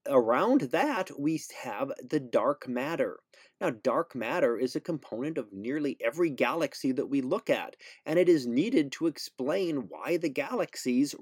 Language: English